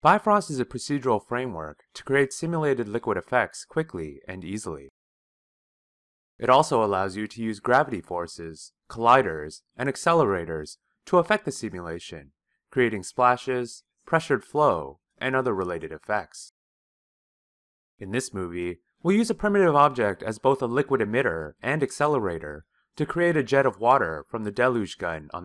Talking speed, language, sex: 145 wpm, English, male